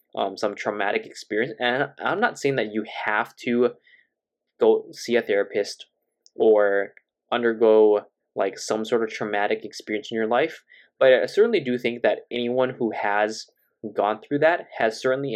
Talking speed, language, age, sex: 160 wpm, English, 20-39, male